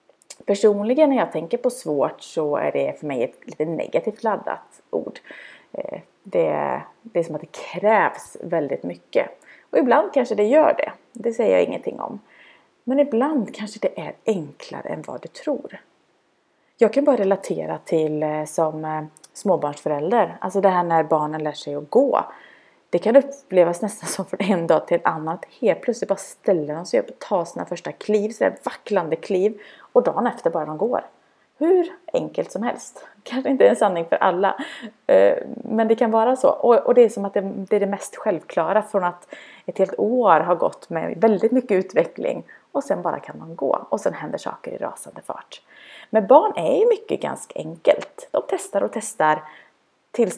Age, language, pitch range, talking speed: 30-49, Swedish, 180-245 Hz, 185 wpm